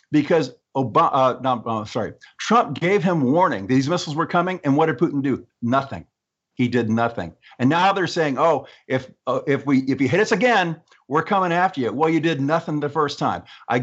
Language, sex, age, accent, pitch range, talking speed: English, male, 50-69, American, 125-160 Hz, 215 wpm